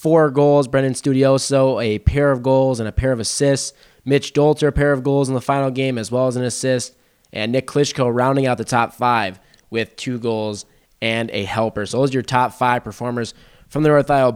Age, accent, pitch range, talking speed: 20-39, American, 120-145 Hz, 220 wpm